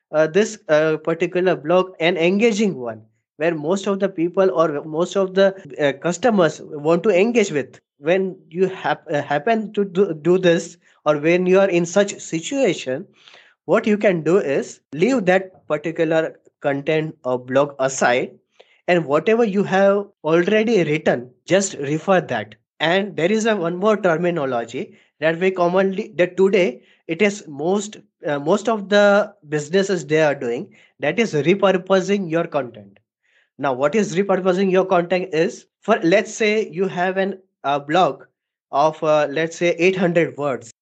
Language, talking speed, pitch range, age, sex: English, 155 wpm, 150-195 Hz, 20-39, male